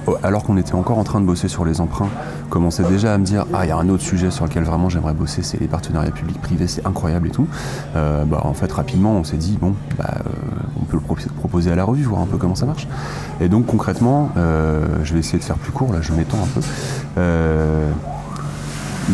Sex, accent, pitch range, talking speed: male, French, 80-105 Hz, 255 wpm